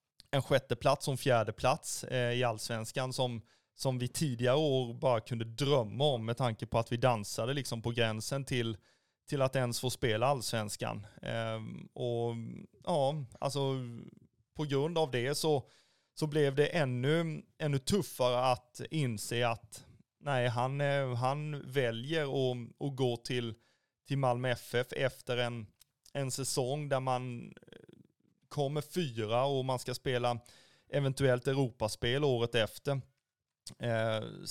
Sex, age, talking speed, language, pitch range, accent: male, 30-49, 130 wpm, Swedish, 120-140 Hz, native